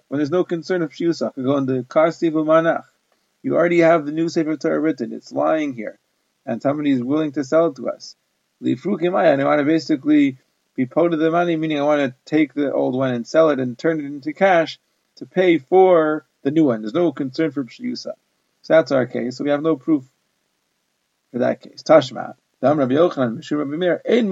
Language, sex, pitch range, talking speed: English, male, 140-175 Hz, 205 wpm